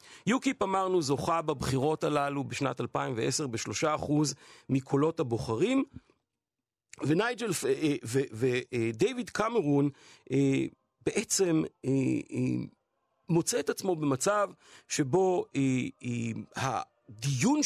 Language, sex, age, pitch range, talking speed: Hebrew, male, 50-69, 130-185 Hz, 70 wpm